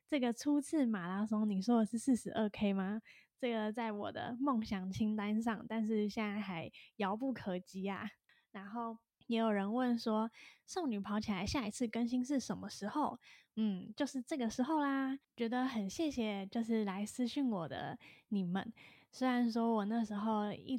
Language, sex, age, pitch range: Chinese, female, 10-29, 205-245 Hz